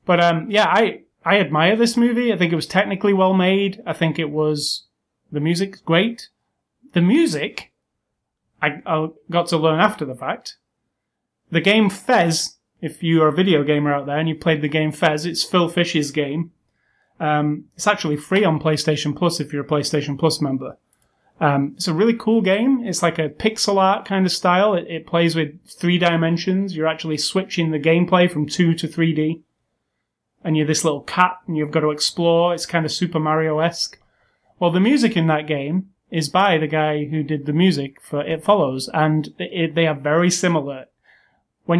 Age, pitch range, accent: 30-49, 155-180 Hz, British